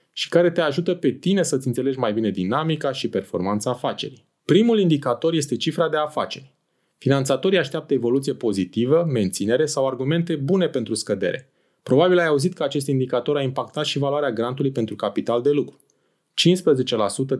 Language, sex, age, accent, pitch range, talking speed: Romanian, male, 30-49, native, 120-160 Hz, 160 wpm